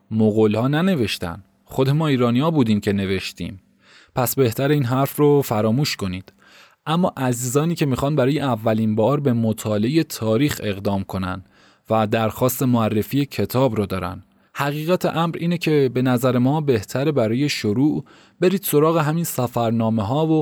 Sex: male